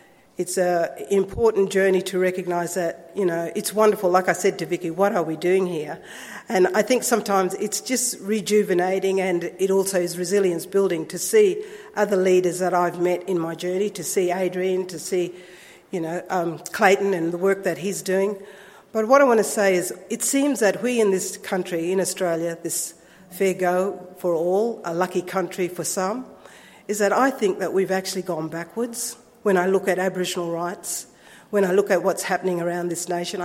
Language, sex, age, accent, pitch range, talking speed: English, female, 50-69, Australian, 175-200 Hz, 195 wpm